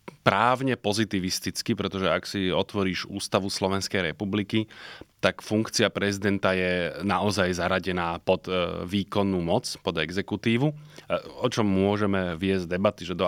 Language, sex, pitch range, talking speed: Slovak, male, 95-110 Hz, 120 wpm